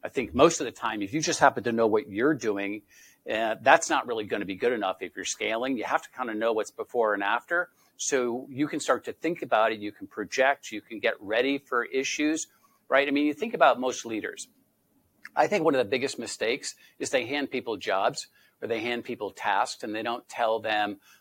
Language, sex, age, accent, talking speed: English, male, 50-69, American, 240 wpm